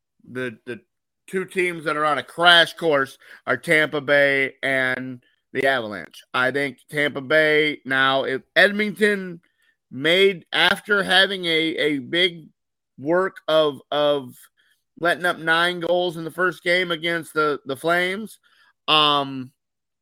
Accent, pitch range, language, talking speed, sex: American, 135-175 Hz, English, 135 wpm, male